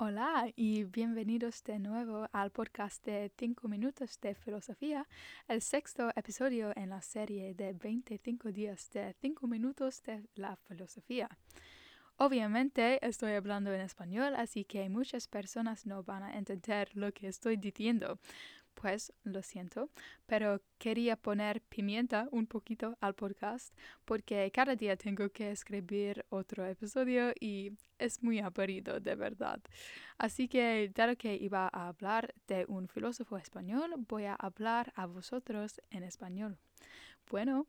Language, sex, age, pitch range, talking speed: English, female, 10-29, 200-240 Hz, 140 wpm